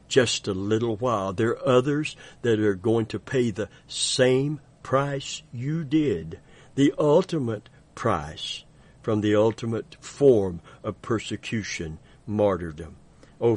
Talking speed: 125 wpm